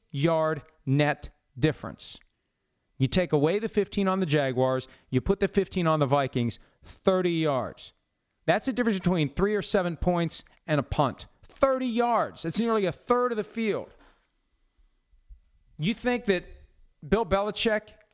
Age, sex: 40-59, male